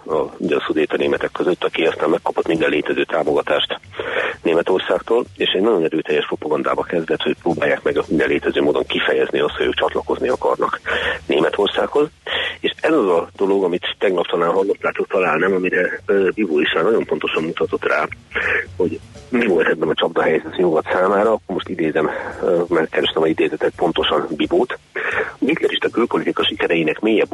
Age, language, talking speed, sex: 40-59, Hungarian, 155 wpm, male